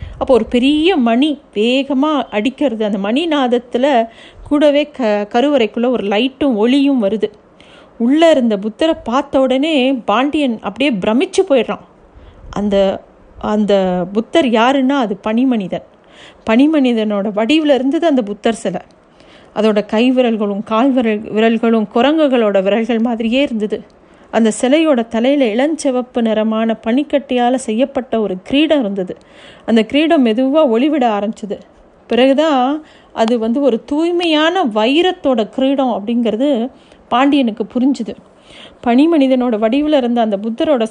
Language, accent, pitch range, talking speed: Tamil, native, 220-275 Hz, 110 wpm